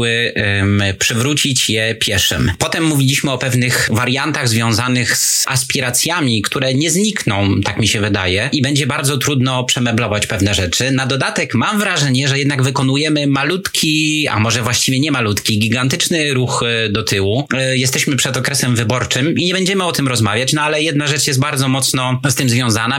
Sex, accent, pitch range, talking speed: male, native, 110-140 Hz, 160 wpm